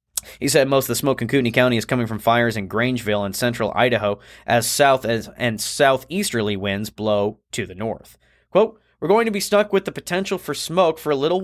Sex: male